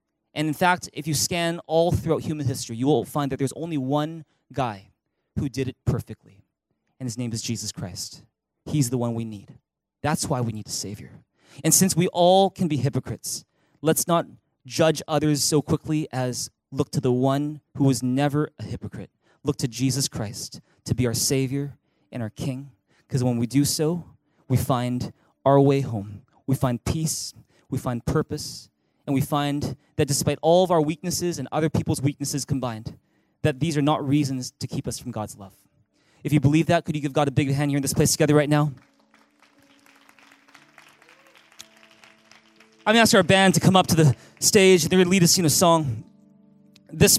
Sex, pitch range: male, 130-165 Hz